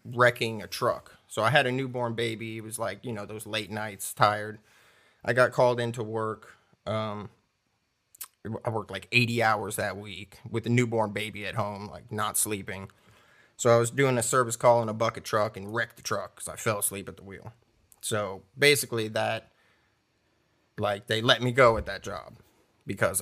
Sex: male